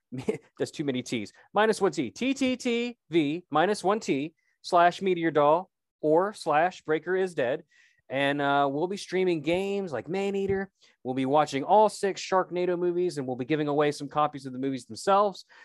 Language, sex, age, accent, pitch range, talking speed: English, male, 30-49, American, 130-185 Hz, 185 wpm